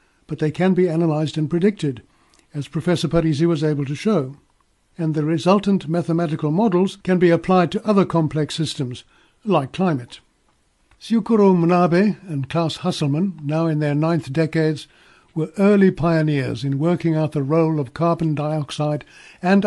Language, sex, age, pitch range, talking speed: English, male, 60-79, 150-180 Hz, 155 wpm